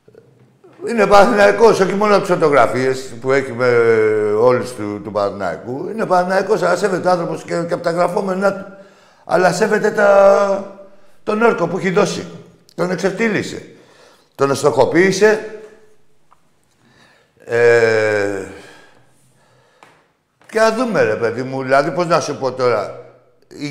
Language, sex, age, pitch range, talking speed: Greek, male, 60-79, 140-190 Hz, 130 wpm